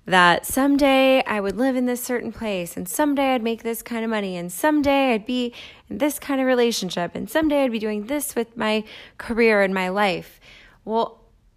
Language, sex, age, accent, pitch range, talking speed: English, female, 20-39, American, 195-245 Hz, 200 wpm